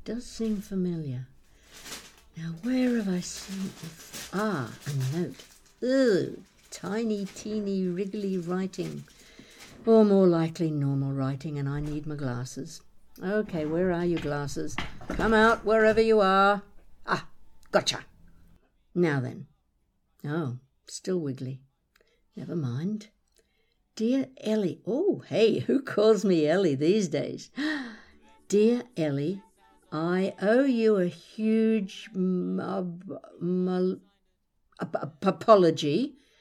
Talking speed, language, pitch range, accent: 100 wpm, English, 160-215 Hz, British